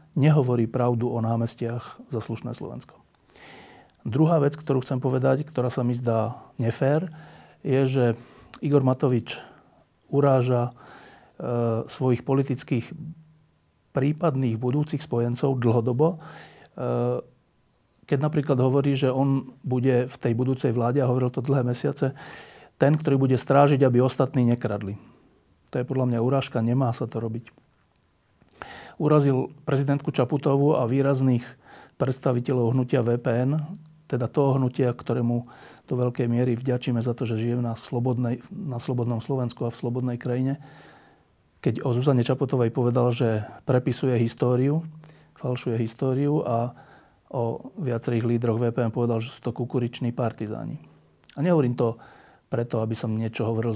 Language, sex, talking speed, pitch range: Slovak, male, 130 wpm, 120-140 Hz